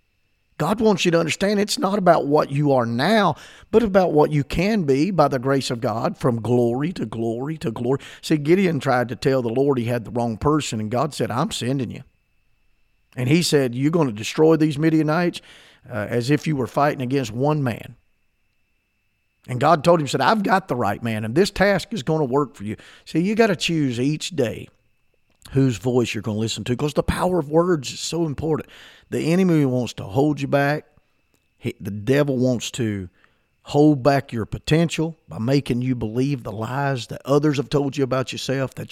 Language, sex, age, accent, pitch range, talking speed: English, male, 50-69, American, 120-170 Hz, 210 wpm